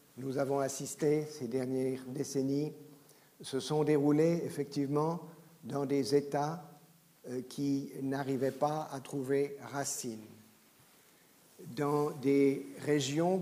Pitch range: 135-160 Hz